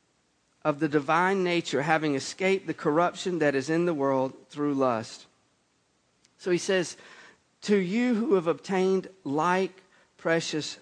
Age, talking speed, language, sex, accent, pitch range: 50-69, 140 wpm, English, male, American, 170-250 Hz